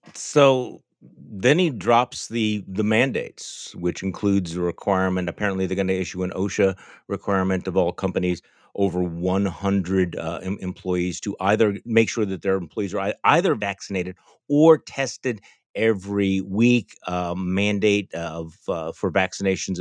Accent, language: American, English